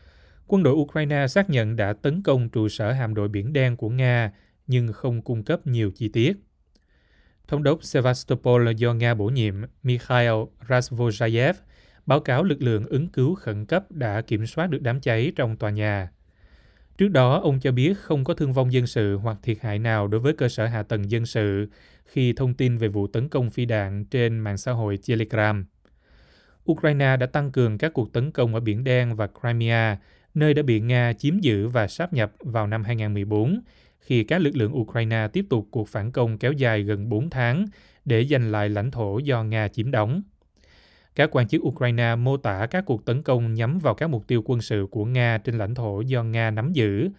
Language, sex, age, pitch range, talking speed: Vietnamese, male, 20-39, 105-130 Hz, 205 wpm